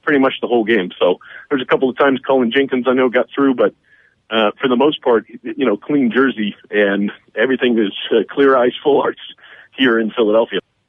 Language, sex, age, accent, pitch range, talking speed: English, male, 40-59, American, 115-135 Hz, 210 wpm